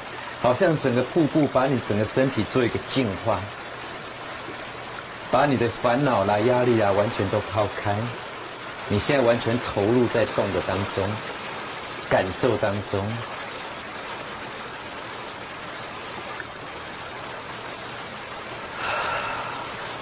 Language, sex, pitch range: Chinese, male, 105-140 Hz